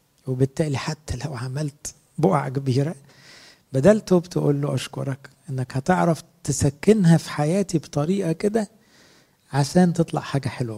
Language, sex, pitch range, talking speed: English, male, 125-160 Hz, 115 wpm